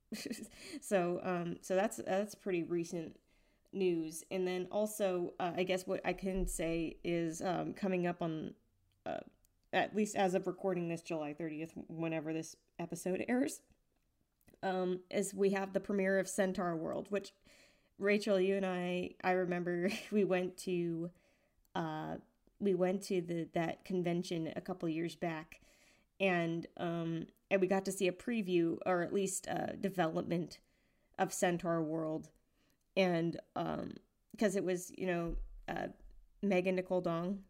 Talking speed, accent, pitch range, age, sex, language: 150 wpm, American, 170-195 Hz, 20-39, female, English